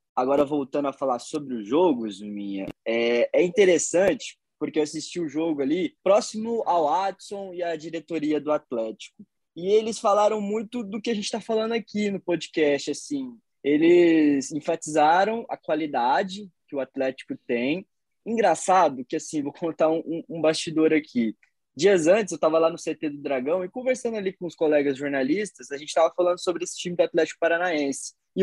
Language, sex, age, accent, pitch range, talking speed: Portuguese, male, 20-39, Brazilian, 145-200 Hz, 175 wpm